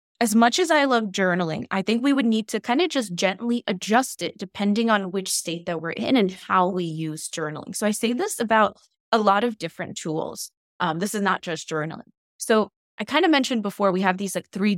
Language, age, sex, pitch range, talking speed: English, 20-39, female, 175-230 Hz, 230 wpm